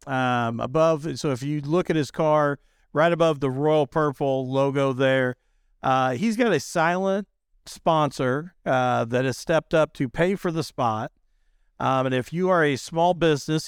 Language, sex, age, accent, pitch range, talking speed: English, male, 50-69, American, 130-150 Hz, 175 wpm